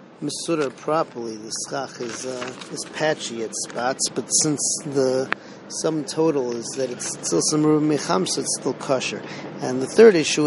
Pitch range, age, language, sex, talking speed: 130-155 Hz, 40-59, English, male, 160 wpm